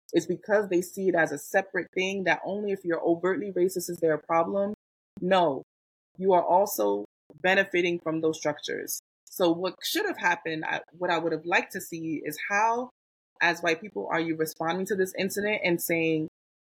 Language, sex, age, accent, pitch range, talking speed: English, female, 20-39, American, 160-195 Hz, 185 wpm